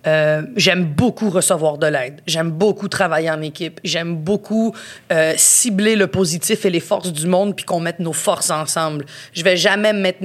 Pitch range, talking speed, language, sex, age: 165-195 Hz, 185 wpm, French, female, 30-49